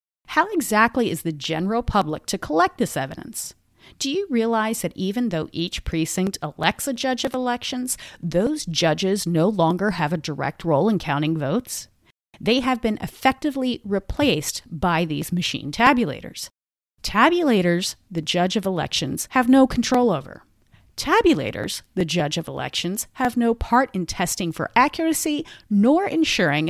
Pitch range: 175-250 Hz